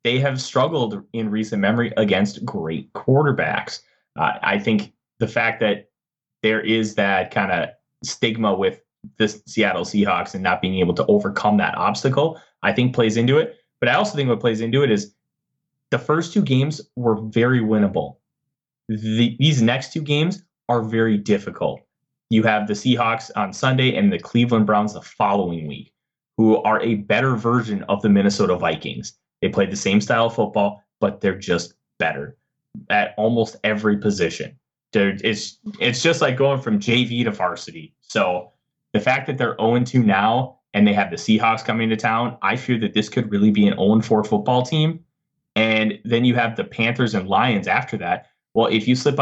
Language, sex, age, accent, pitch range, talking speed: English, male, 30-49, American, 105-130 Hz, 180 wpm